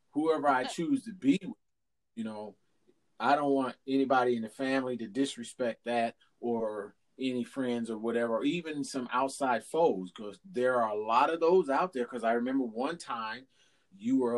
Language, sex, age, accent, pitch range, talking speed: English, male, 30-49, American, 115-140 Hz, 175 wpm